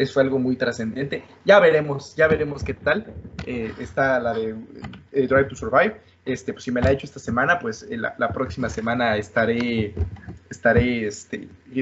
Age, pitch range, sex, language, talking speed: 20-39, 115-140 Hz, male, Spanish, 190 wpm